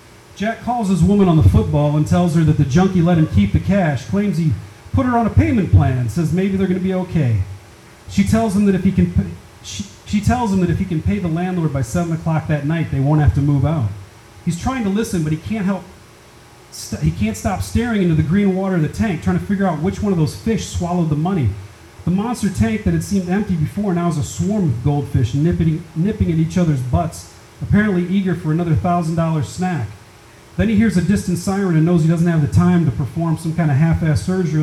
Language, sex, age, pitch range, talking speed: English, male, 40-59, 135-180 Hz, 245 wpm